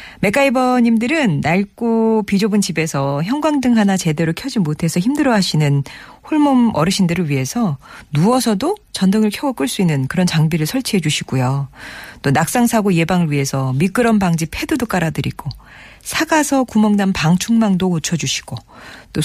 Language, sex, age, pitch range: Korean, female, 40-59, 150-235 Hz